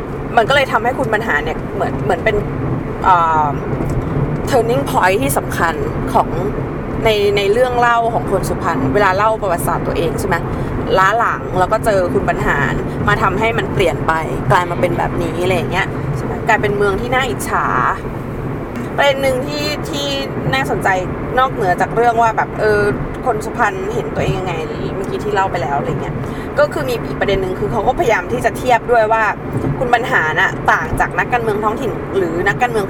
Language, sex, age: Thai, female, 20-39